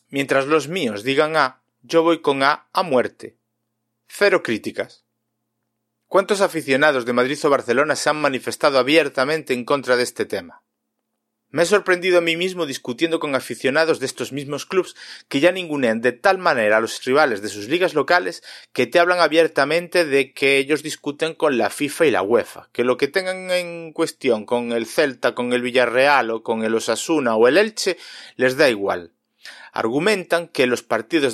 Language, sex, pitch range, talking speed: Spanish, male, 125-175 Hz, 180 wpm